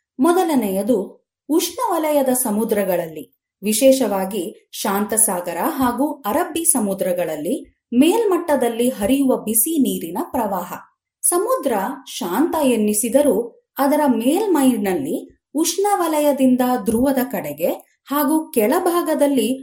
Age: 30-49